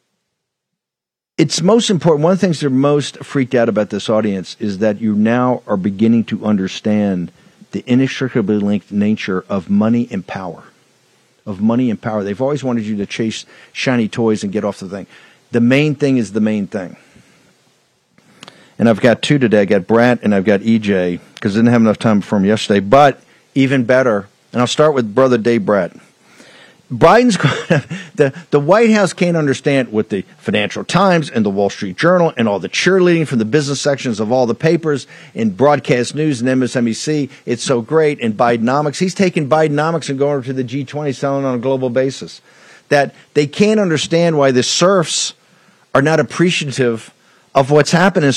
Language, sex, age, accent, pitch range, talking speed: English, male, 50-69, American, 115-155 Hz, 185 wpm